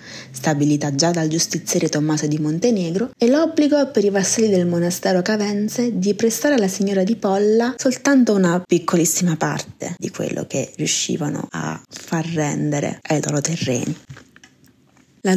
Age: 20-39